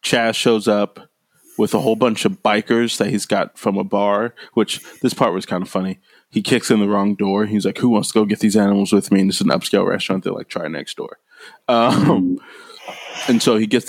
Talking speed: 240 wpm